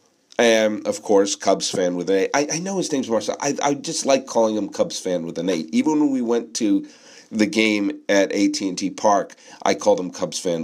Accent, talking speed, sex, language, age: American, 230 wpm, male, English, 50-69